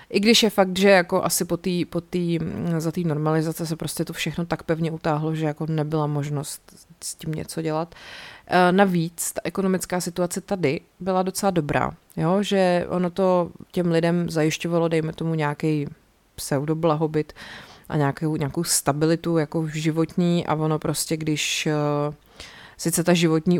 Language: Czech